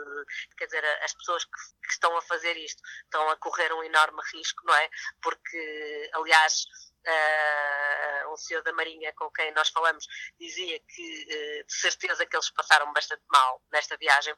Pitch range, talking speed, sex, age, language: 155-240 Hz, 170 wpm, female, 20-39, Portuguese